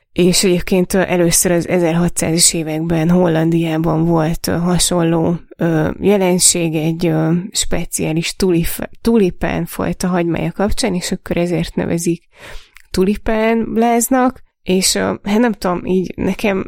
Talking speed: 90 wpm